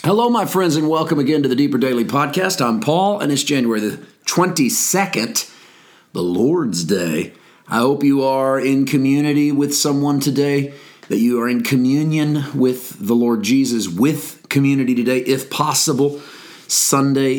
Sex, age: male, 40-59